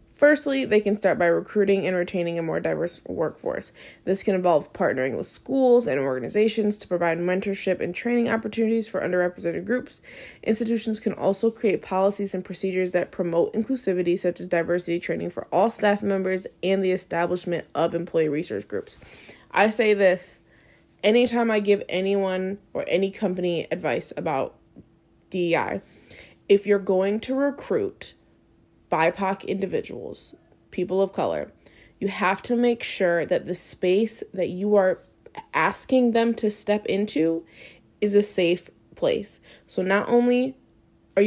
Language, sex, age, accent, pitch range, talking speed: English, female, 20-39, American, 175-215 Hz, 145 wpm